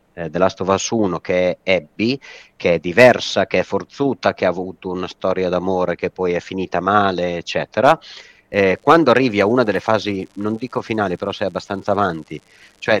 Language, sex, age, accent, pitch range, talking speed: Italian, male, 30-49, native, 90-110 Hz, 195 wpm